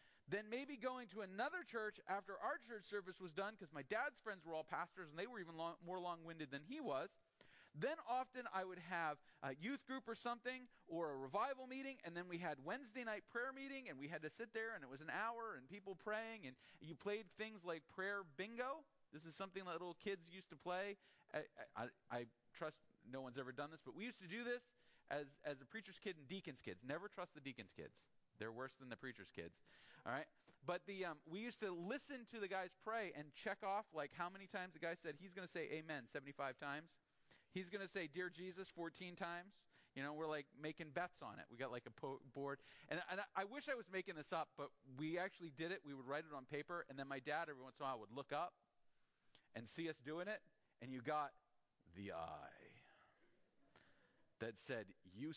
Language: English